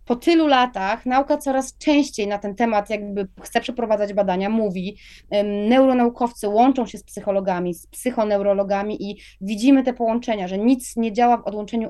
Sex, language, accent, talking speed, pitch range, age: female, Polish, native, 160 wpm, 200-245 Hz, 20-39